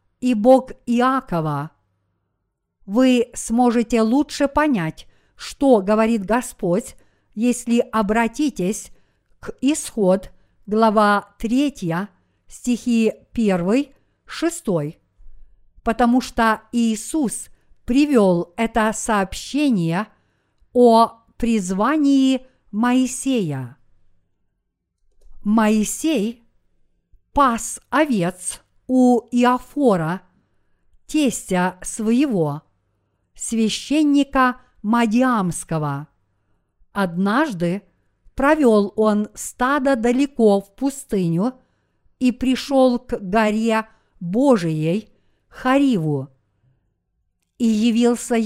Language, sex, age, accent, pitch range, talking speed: Russian, female, 50-69, native, 180-250 Hz, 65 wpm